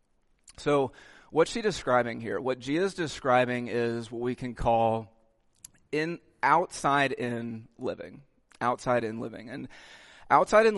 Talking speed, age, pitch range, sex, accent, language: 110 wpm, 30-49, 120-140 Hz, male, American, English